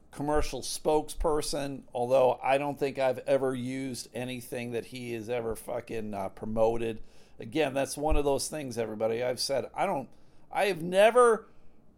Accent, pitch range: American, 115-155 Hz